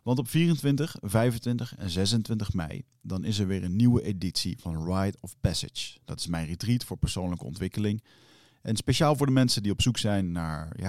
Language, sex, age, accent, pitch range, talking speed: Dutch, male, 40-59, Dutch, 90-120 Hz, 200 wpm